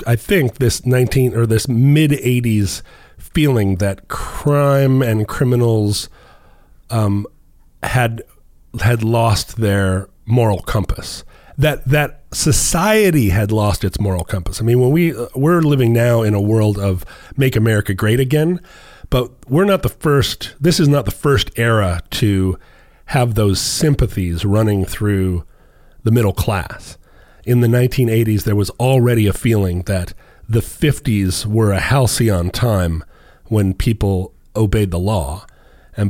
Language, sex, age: English, male, 40-59